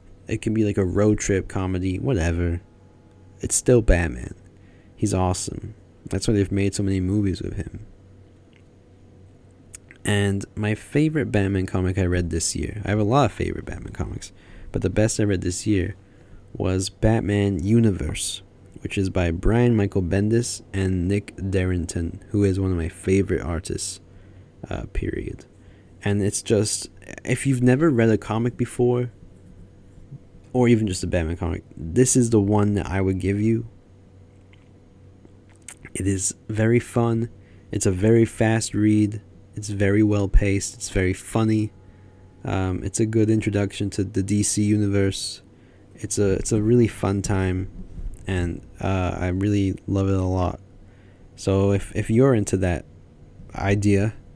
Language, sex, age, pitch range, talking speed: English, male, 20-39, 95-105 Hz, 155 wpm